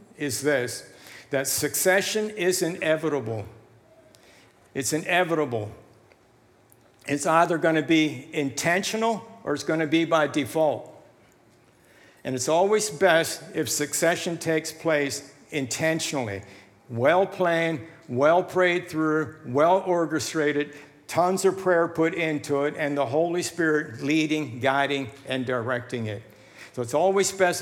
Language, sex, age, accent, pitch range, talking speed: English, male, 60-79, American, 130-160 Hz, 115 wpm